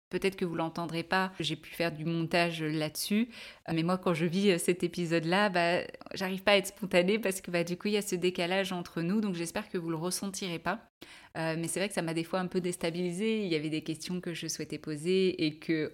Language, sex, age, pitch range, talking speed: French, female, 20-39, 160-195 Hz, 260 wpm